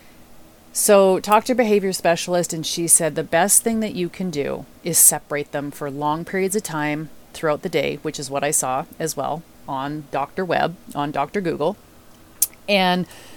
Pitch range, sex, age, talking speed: 155-205 Hz, female, 30-49, 185 wpm